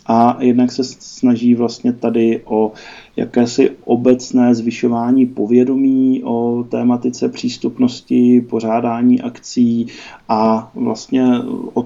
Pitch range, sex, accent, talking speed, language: 115-130 Hz, male, native, 95 wpm, Czech